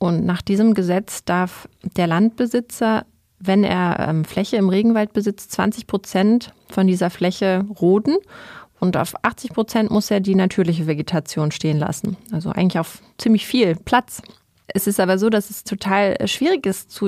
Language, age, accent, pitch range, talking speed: German, 30-49, German, 180-220 Hz, 165 wpm